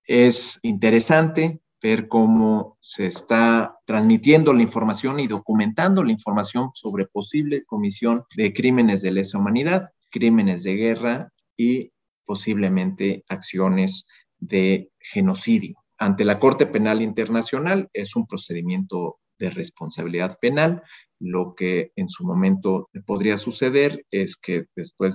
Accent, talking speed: Mexican, 120 wpm